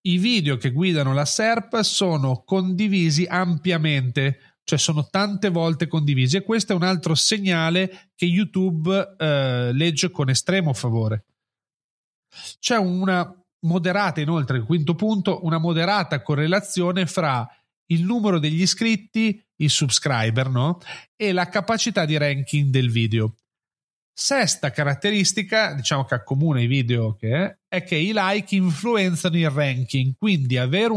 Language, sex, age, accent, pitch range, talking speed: Italian, male, 40-59, native, 135-185 Hz, 135 wpm